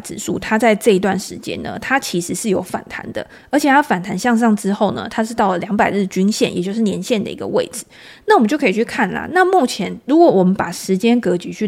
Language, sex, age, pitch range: Chinese, female, 20-39, 190-250 Hz